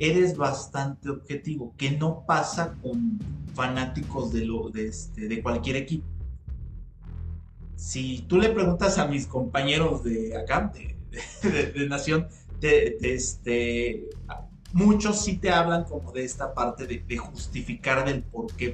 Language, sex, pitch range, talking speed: Spanish, male, 115-160 Hz, 145 wpm